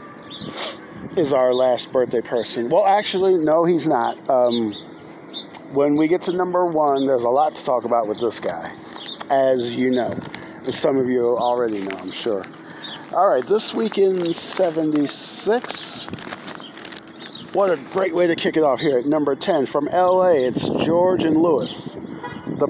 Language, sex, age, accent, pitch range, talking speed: English, male, 50-69, American, 125-170 Hz, 165 wpm